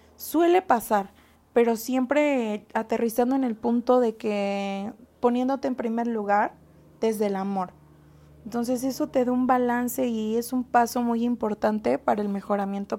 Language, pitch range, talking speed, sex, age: Spanish, 210-245 Hz, 150 wpm, female, 20-39